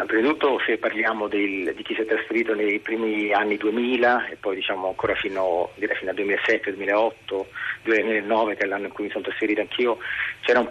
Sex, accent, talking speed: male, native, 195 wpm